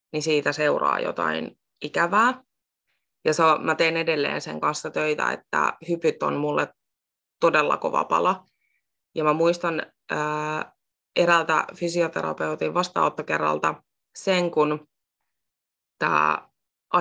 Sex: female